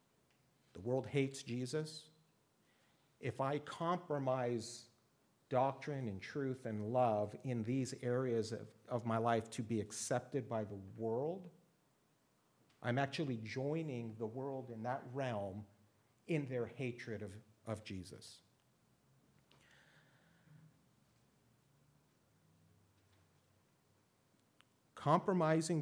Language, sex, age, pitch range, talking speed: English, male, 50-69, 110-150 Hz, 95 wpm